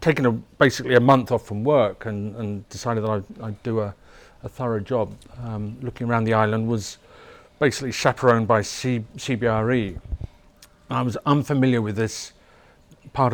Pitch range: 105-125 Hz